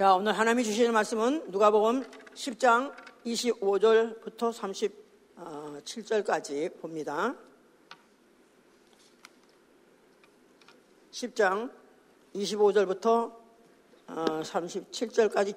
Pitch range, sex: 210-250 Hz, female